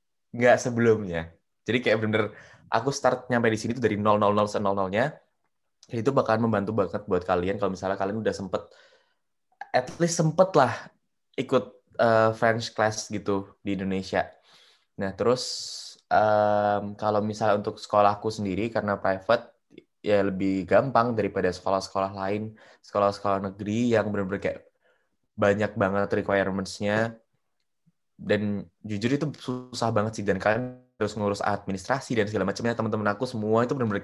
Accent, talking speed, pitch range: native, 140 wpm, 100-115 Hz